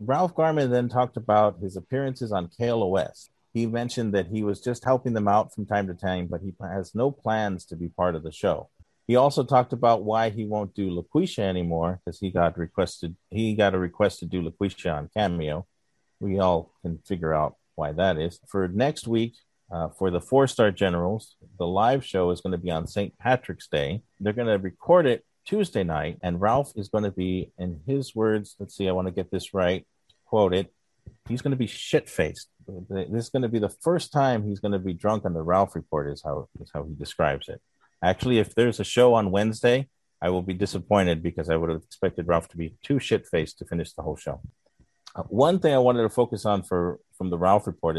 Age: 40-59